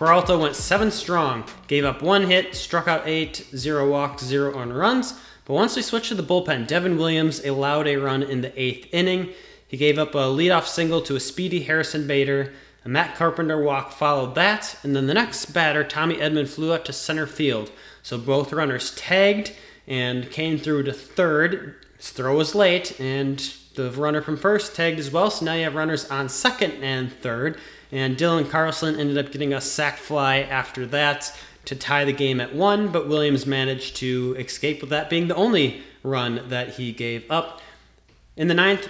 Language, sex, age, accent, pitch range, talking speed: English, male, 30-49, American, 135-170 Hz, 195 wpm